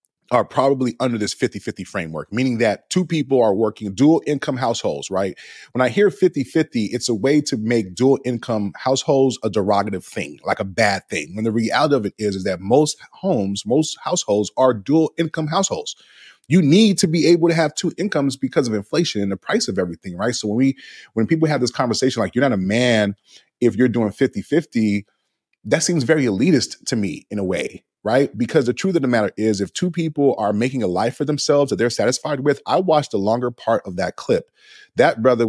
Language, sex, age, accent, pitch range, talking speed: English, male, 30-49, American, 110-155 Hz, 210 wpm